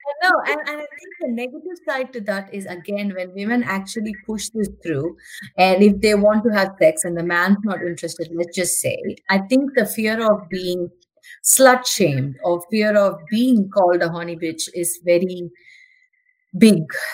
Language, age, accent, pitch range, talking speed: English, 50-69, Indian, 180-230 Hz, 180 wpm